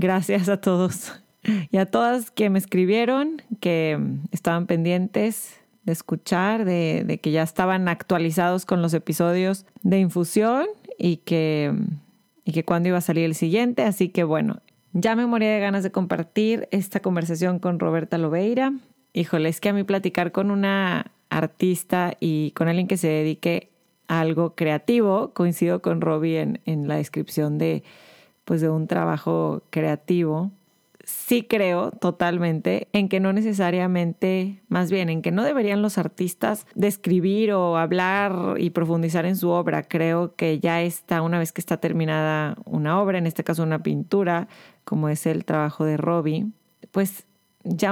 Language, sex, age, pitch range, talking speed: Spanish, female, 30-49, 165-200 Hz, 160 wpm